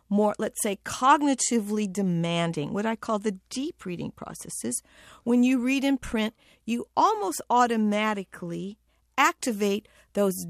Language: English